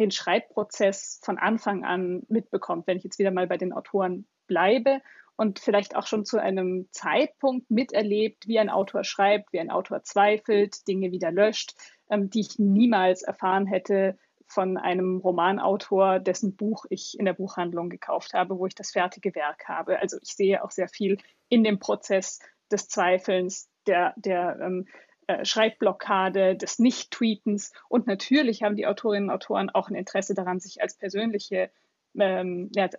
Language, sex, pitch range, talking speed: German, female, 190-220 Hz, 160 wpm